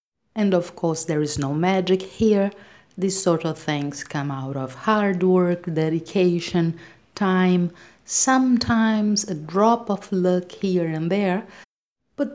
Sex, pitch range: female, 150-190 Hz